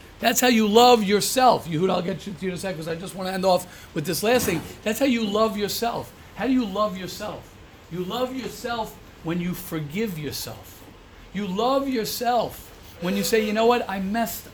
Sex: male